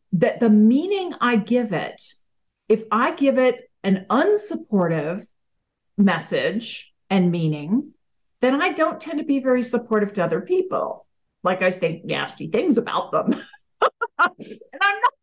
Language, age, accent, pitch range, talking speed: English, 50-69, American, 200-280 Hz, 140 wpm